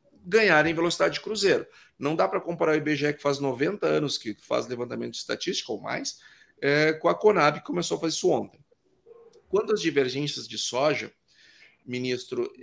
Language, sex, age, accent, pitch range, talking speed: Portuguese, male, 40-59, Brazilian, 135-175 Hz, 165 wpm